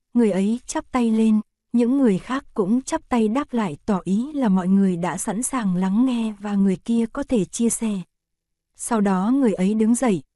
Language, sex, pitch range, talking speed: Vietnamese, female, 195-240 Hz, 210 wpm